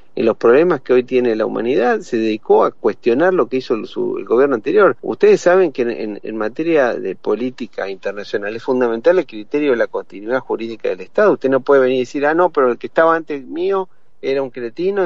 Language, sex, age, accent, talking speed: Spanish, male, 40-59, Argentinian, 220 wpm